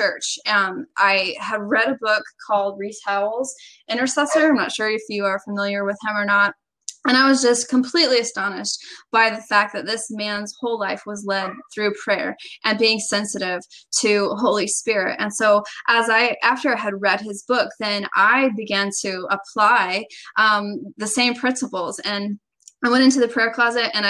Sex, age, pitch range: female, 10-29, 200-235 Hz